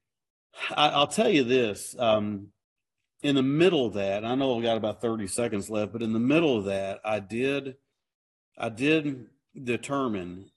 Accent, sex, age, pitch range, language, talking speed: American, male, 50-69, 105-130 Hz, English, 175 wpm